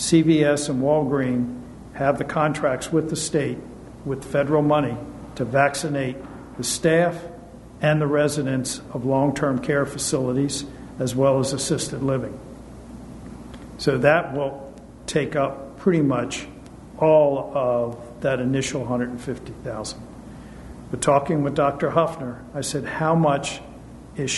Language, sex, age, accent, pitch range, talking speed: English, male, 50-69, American, 130-155 Hz, 125 wpm